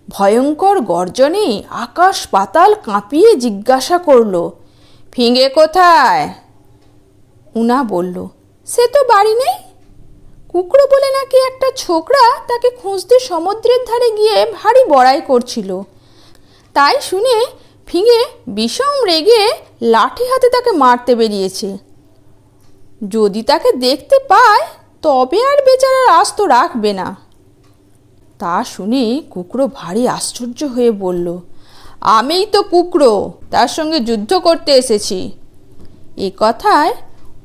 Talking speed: 105 wpm